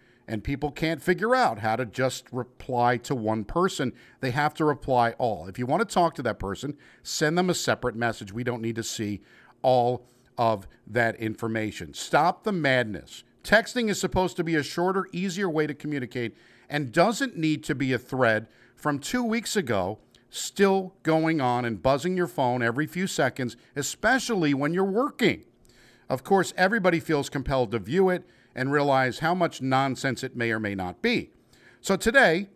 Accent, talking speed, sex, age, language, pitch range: American, 180 wpm, male, 50-69, English, 120-170 Hz